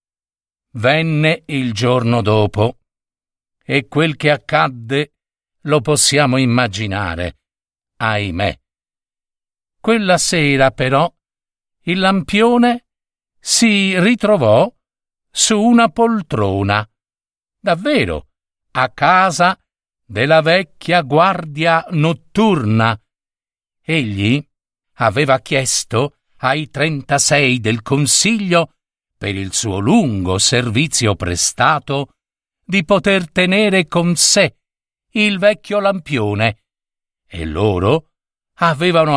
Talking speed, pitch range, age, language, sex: 80 wpm, 105-170 Hz, 50-69, Italian, male